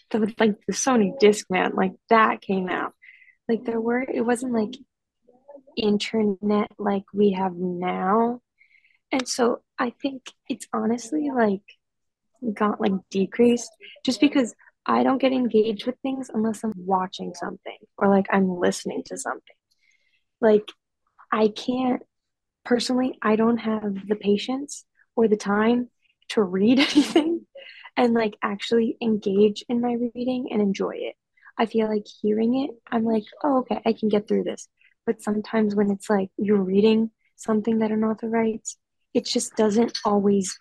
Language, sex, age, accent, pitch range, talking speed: English, female, 20-39, American, 205-240 Hz, 150 wpm